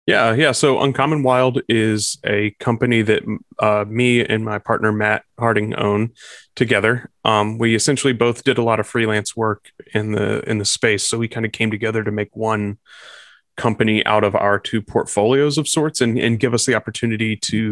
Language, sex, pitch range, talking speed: English, male, 105-120 Hz, 195 wpm